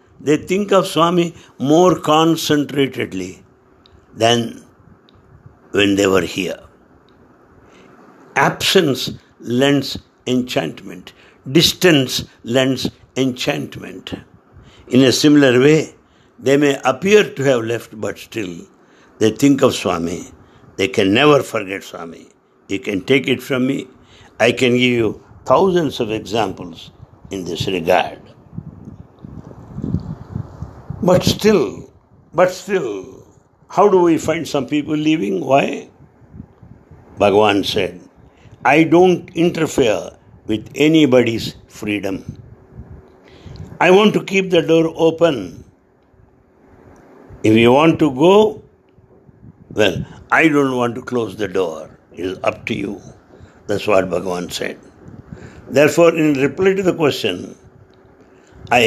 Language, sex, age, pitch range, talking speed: English, male, 60-79, 120-160 Hz, 110 wpm